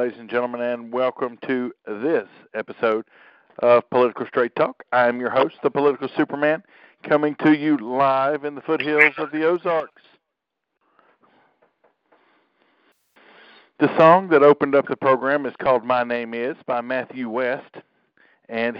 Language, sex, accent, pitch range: English, male, American, 115-135 Hz